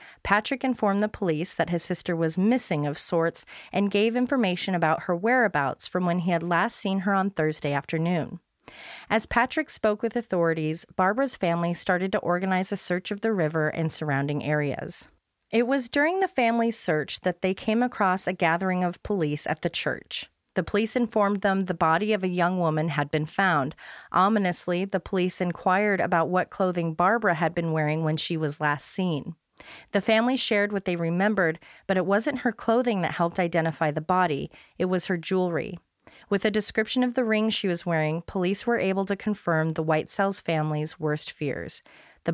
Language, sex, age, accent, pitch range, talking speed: English, female, 30-49, American, 165-210 Hz, 185 wpm